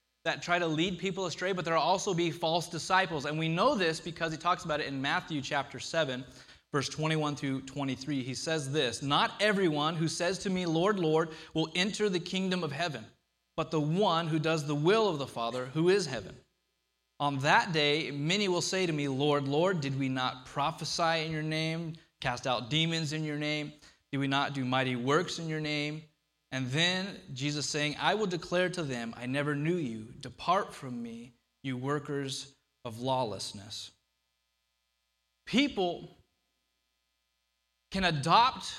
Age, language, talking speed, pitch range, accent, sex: 30-49, English, 175 wpm, 130-170 Hz, American, male